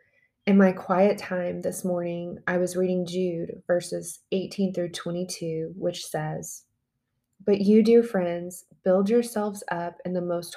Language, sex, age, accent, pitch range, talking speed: English, female, 20-39, American, 170-190 Hz, 150 wpm